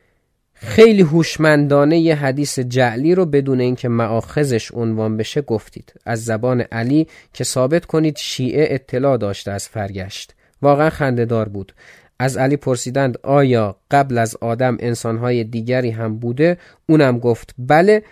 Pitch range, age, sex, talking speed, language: 115-150 Hz, 30-49, male, 135 wpm, Persian